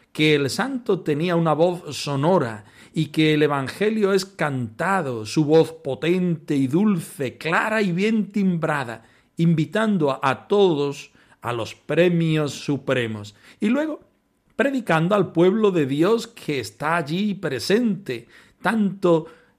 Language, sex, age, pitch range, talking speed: Spanish, male, 40-59, 140-205 Hz, 125 wpm